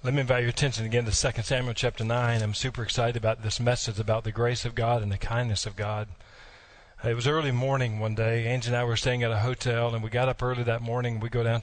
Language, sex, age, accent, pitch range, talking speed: English, male, 40-59, American, 115-130 Hz, 265 wpm